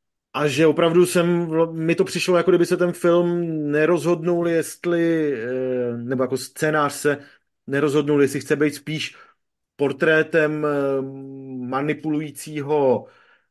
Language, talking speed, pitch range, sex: Czech, 105 wpm, 135-155 Hz, male